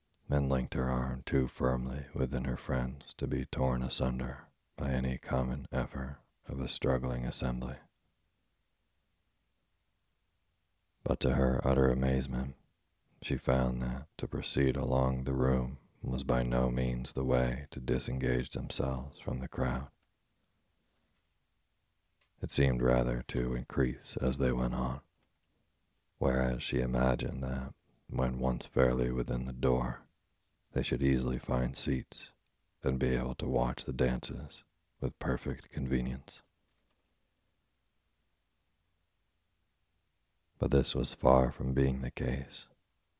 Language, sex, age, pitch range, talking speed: English, male, 40-59, 65-75 Hz, 120 wpm